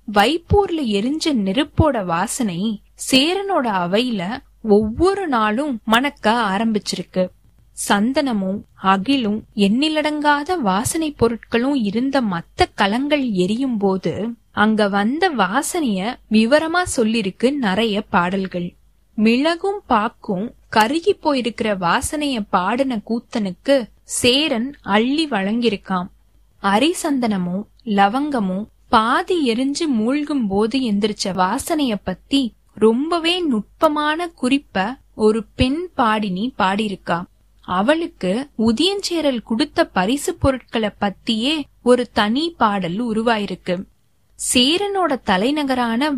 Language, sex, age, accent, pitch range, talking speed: Tamil, female, 20-39, native, 205-285 Hz, 85 wpm